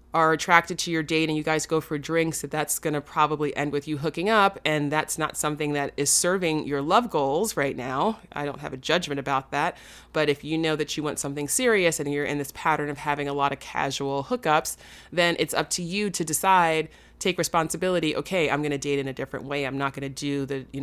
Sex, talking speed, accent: female, 250 wpm, American